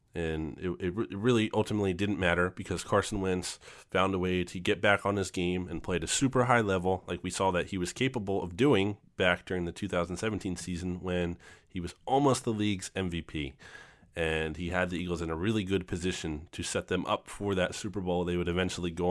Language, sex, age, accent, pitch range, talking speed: English, male, 30-49, American, 85-100 Hz, 215 wpm